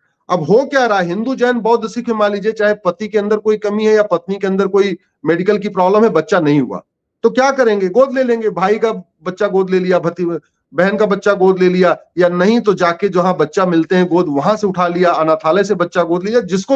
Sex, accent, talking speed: male, native, 245 wpm